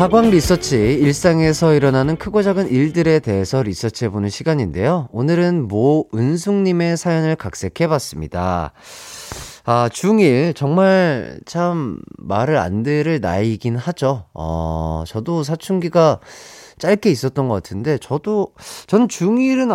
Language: Korean